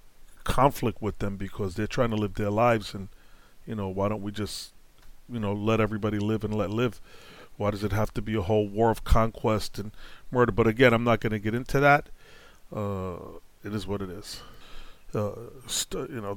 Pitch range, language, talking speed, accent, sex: 105-130 Hz, English, 210 wpm, American, male